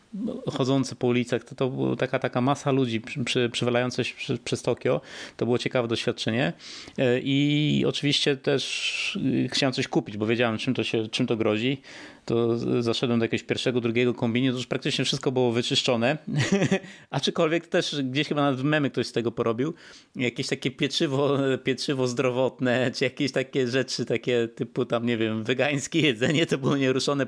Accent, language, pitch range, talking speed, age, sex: native, Polish, 120-145 Hz, 170 wpm, 30-49, male